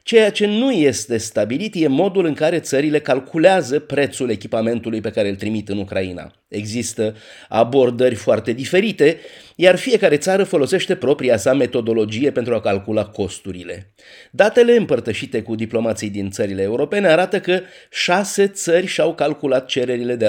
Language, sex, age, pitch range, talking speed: Romanian, male, 30-49, 115-180 Hz, 145 wpm